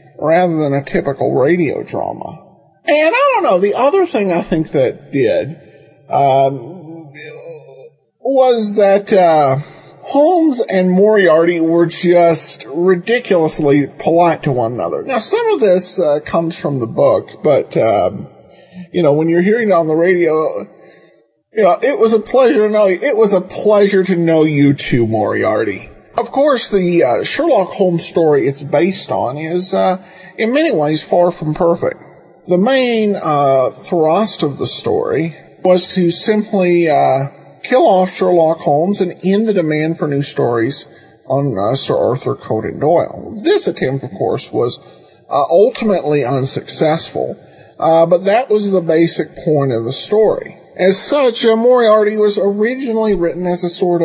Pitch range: 155-210 Hz